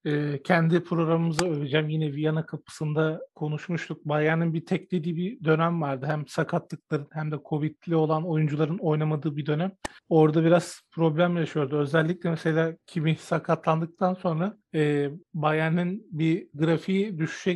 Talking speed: 130 wpm